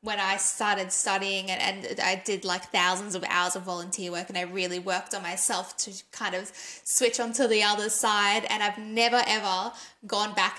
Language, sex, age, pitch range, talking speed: English, female, 10-29, 205-240 Hz, 200 wpm